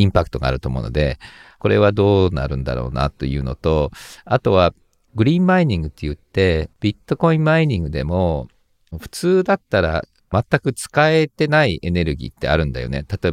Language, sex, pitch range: Japanese, male, 80-125 Hz